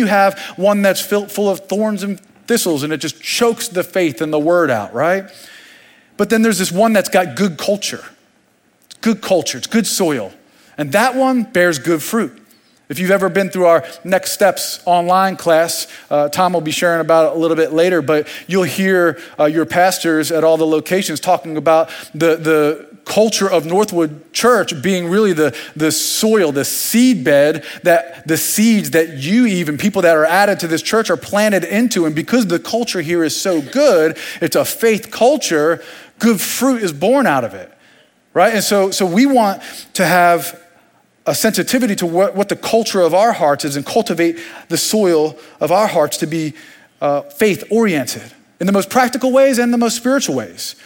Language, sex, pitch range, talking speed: English, male, 160-205 Hz, 190 wpm